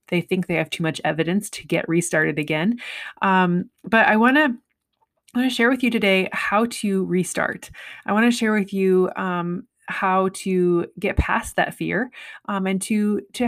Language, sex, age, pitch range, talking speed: English, female, 20-39, 170-210 Hz, 190 wpm